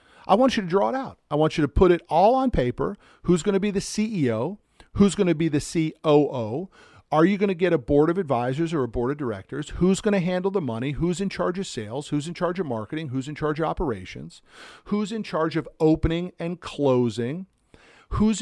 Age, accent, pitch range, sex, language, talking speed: 50-69, American, 125-180 Hz, male, English, 230 wpm